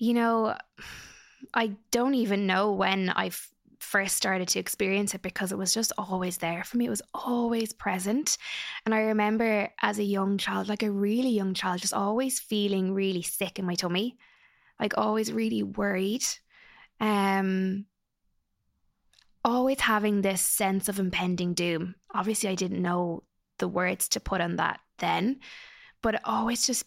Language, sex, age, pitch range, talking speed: English, female, 20-39, 190-220 Hz, 160 wpm